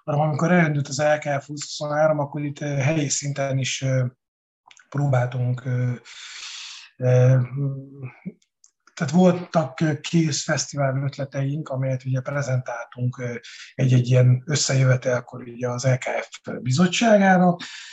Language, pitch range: Hungarian, 130-155 Hz